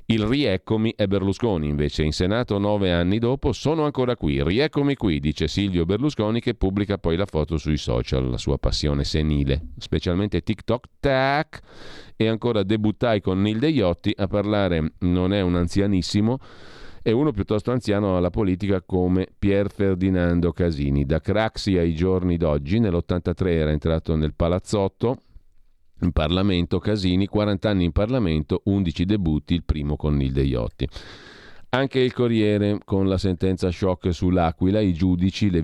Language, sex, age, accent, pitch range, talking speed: Italian, male, 40-59, native, 85-105 Hz, 150 wpm